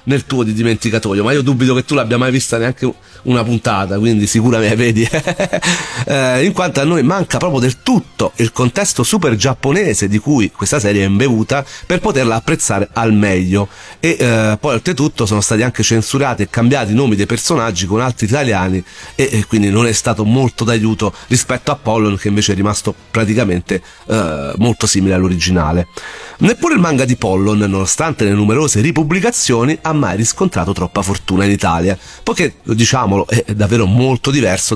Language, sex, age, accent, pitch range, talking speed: Italian, male, 40-59, native, 105-135 Hz, 175 wpm